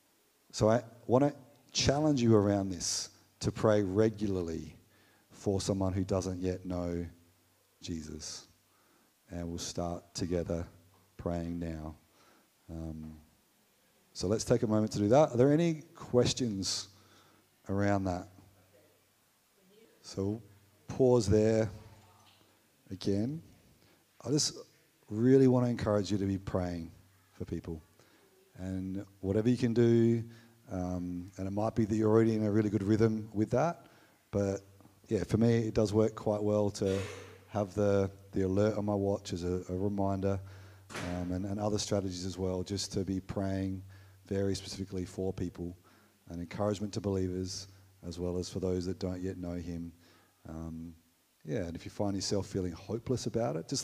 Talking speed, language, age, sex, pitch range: 155 wpm, English, 40-59, male, 90-110 Hz